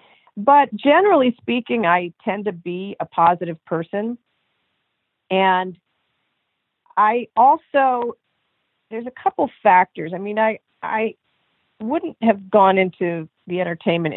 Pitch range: 165-230 Hz